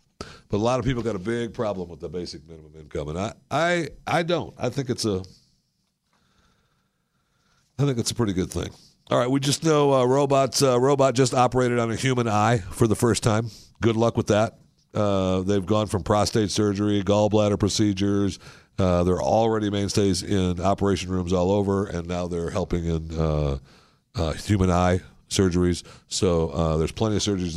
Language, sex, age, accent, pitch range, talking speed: English, male, 60-79, American, 90-115 Hz, 185 wpm